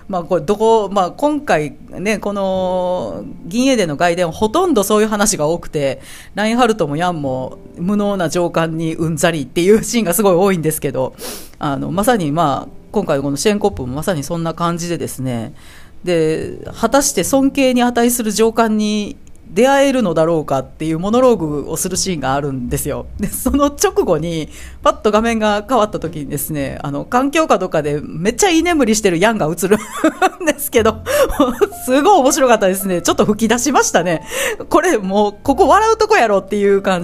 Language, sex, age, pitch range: Japanese, female, 40-59, 155-250 Hz